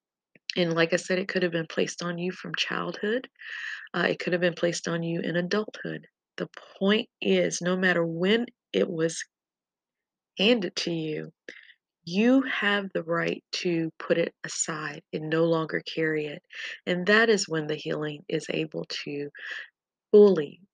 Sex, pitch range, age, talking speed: female, 155-185 Hz, 30-49, 165 wpm